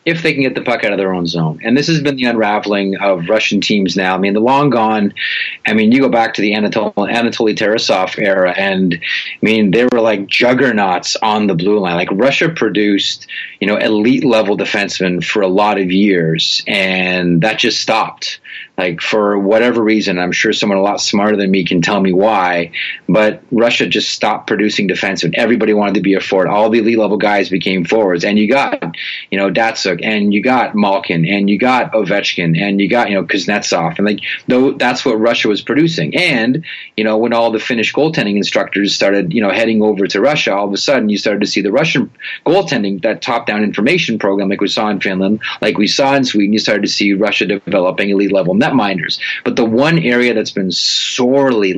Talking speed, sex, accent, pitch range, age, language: 215 wpm, male, American, 100-115 Hz, 30-49, English